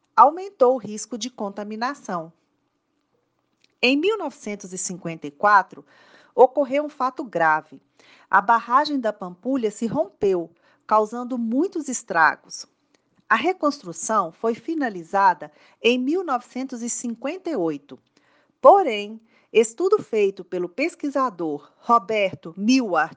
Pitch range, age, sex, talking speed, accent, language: 190-280 Hz, 40-59, female, 85 wpm, Brazilian, Portuguese